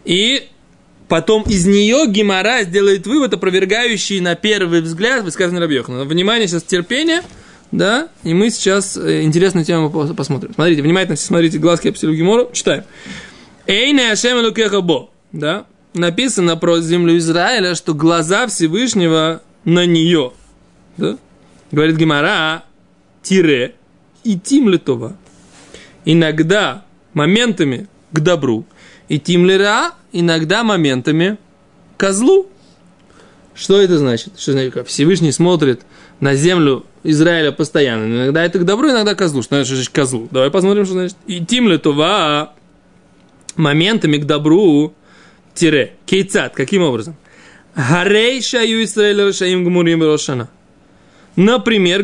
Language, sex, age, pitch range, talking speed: Russian, male, 20-39, 155-200 Hz, 105 wpm